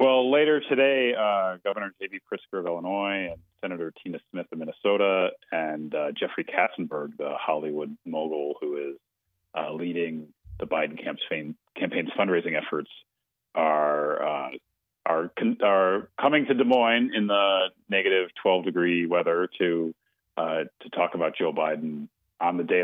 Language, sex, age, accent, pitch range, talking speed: English, male, 40-59, American, 80-130 Hz, 145 wpm